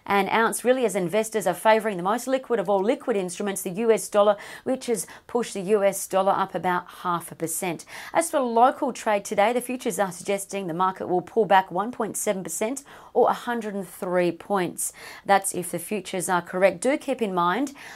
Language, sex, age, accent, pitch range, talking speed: English, female, 40-59, Australian, 185-230 Hz, 185 wpm